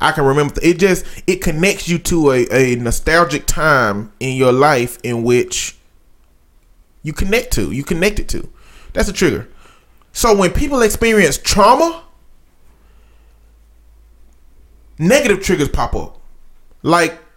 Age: 20-39